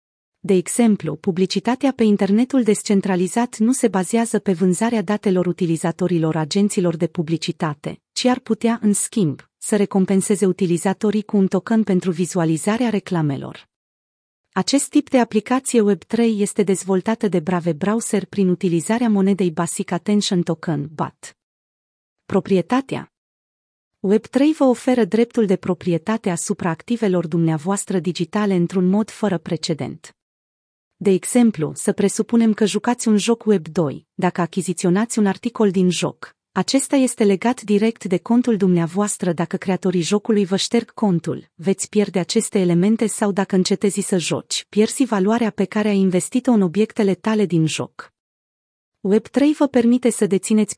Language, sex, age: Romanian, female, 40-59